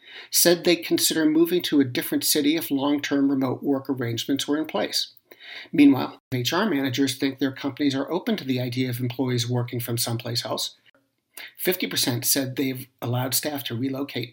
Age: 50-69